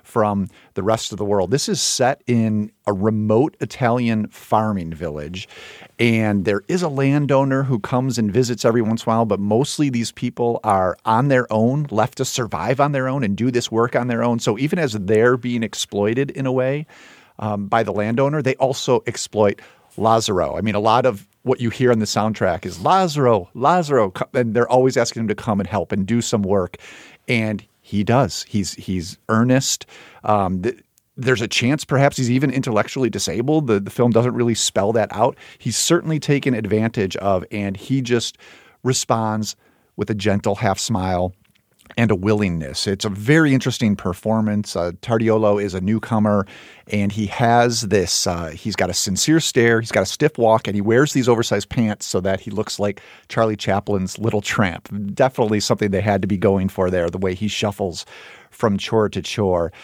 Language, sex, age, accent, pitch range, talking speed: English, male, 50-69, American, 100-125 Hz, 190 wpm